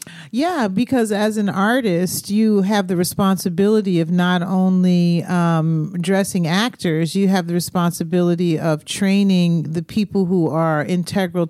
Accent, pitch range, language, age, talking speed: American, 175-205 Hz, English, 40-59, 135 wpm